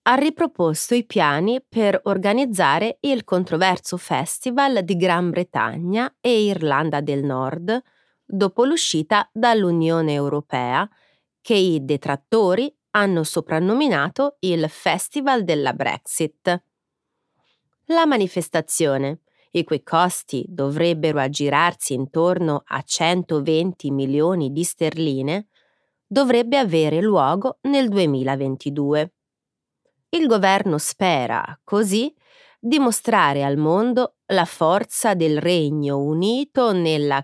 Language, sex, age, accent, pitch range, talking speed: Italian, female, 30-49, native, 150-225 Hz, 100 wpm